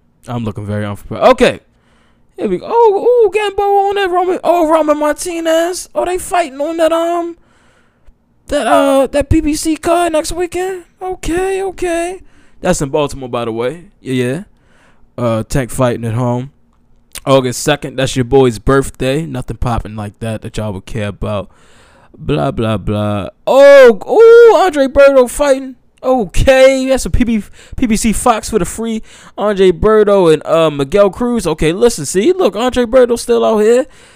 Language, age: English, 20-39